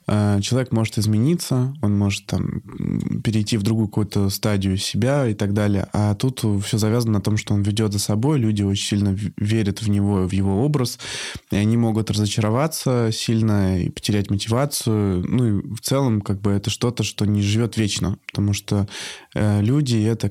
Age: 20-39